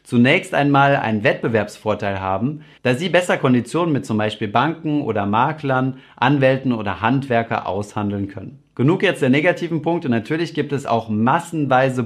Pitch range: 110-145 Hz